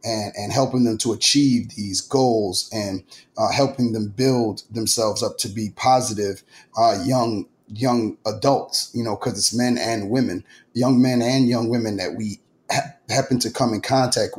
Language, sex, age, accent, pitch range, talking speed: English, male, 30-49, American, 110-130 Hz, 175 wpm